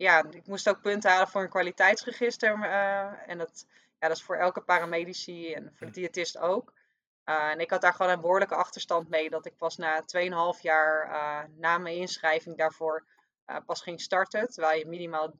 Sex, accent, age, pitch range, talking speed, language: female, Dutch, 20-39, 160-190 Hz, 200 wpm, Dutch